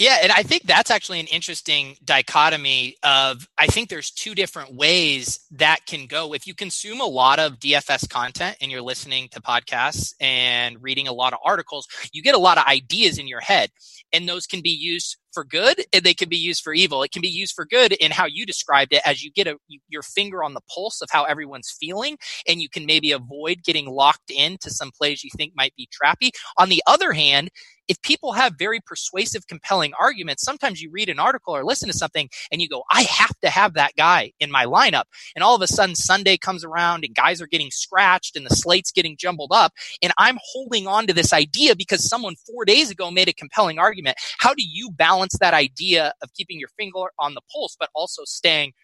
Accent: American